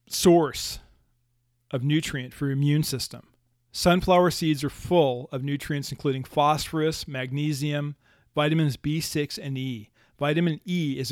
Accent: American